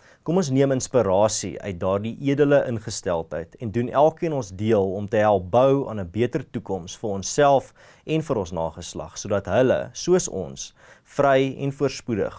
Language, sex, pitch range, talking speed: English, male, 100-140 Hz, 175 wpm